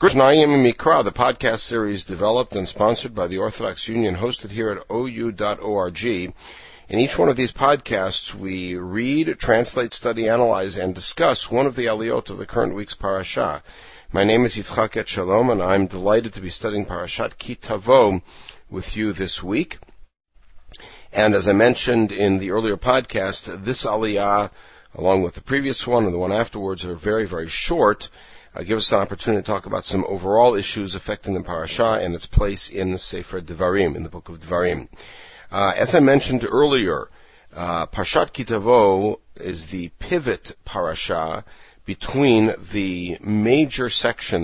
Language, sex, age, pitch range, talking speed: English, male, 50-69, 90-115 Hz, 160 wpm